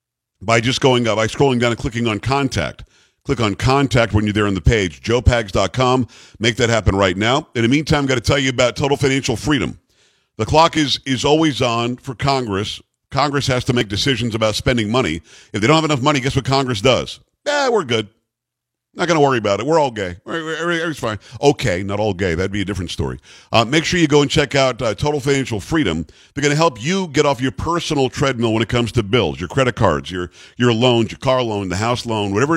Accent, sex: American, male